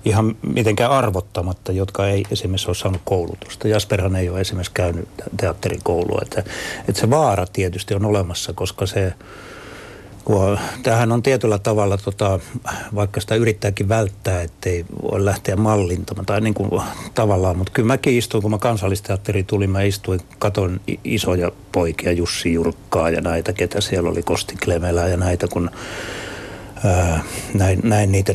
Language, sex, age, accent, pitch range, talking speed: Finnish, male, 60-79, native, 95-110 Hz, 150 wpm